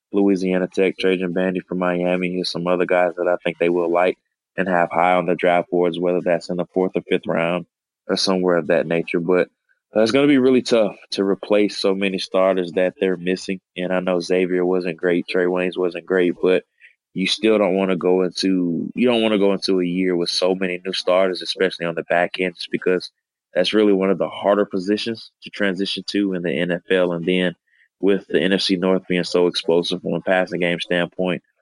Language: English